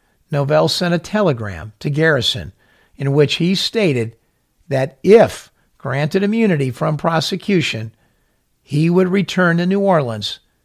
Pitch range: 110-160 Hz